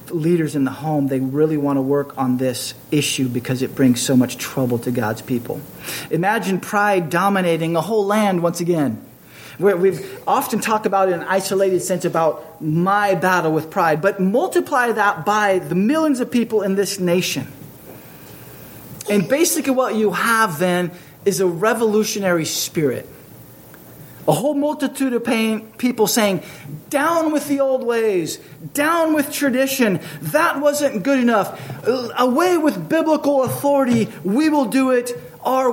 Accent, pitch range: American, 155-235 Hz